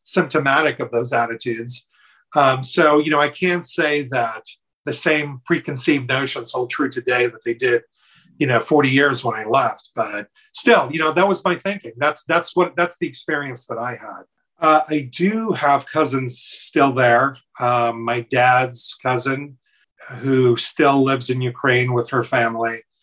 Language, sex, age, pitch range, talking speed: English, male, 40-59, 125-145 Hz, 170 wpm